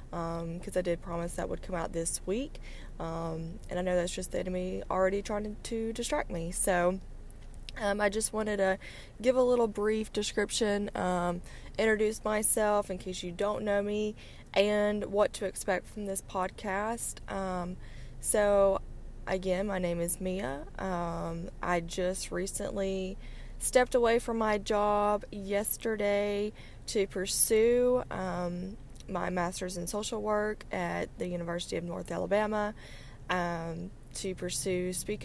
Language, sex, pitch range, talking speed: English, female, 180-210 Hz, 150 wpm